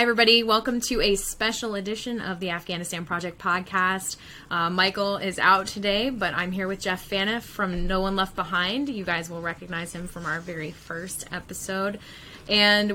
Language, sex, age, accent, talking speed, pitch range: English, female, 10-29, American, 175 wpm, 165-195 Hz